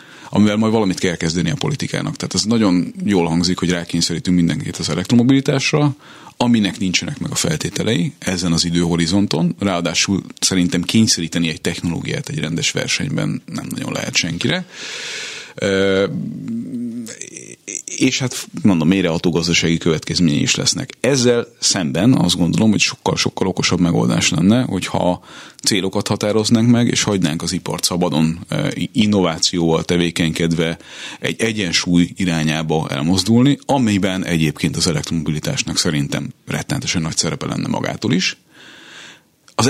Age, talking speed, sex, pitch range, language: 30-49, 125 wpm, male, 85-110 Hz, Hungarian